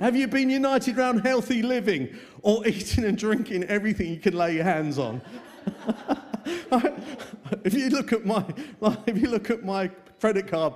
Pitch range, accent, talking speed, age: 150-210 Hz, British, 145 wpm, 50-69